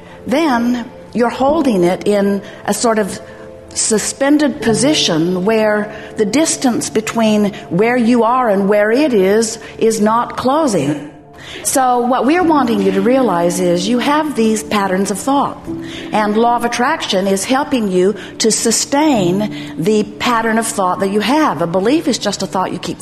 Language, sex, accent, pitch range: English, female, American, 190-245 Hz